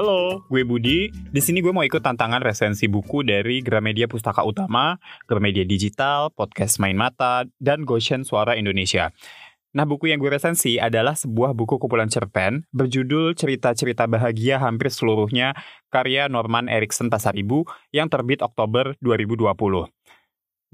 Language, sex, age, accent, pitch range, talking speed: Indonesian, male, 20-39, native, 115-145 Hz, 135 wpm